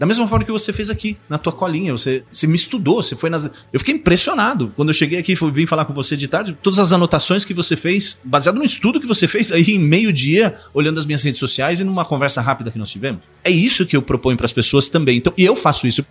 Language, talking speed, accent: Portuguese, 270 wpm, Brazilian